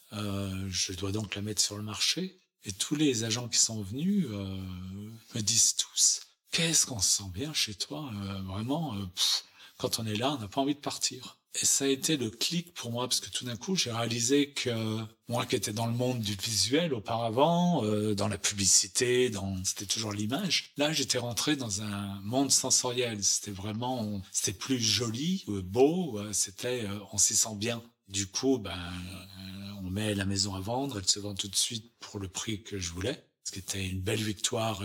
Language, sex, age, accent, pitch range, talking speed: French, male, 40-59, French, 100-120 Hz, 210 wpm